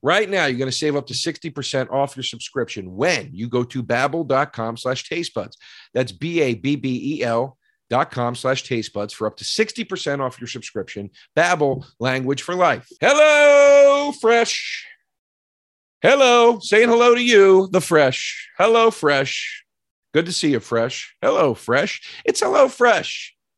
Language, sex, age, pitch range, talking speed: English, male, 40-59, 130-210 Hz, 140 wpm